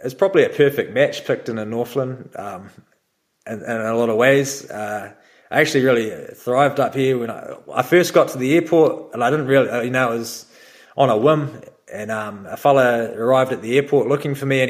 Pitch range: 115-140 Hz